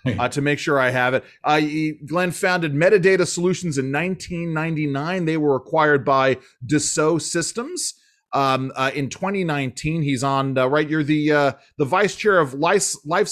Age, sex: 30-49, male